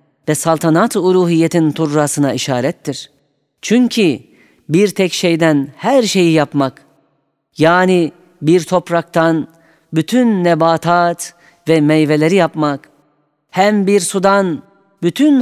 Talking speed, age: 95 wpm, 40-59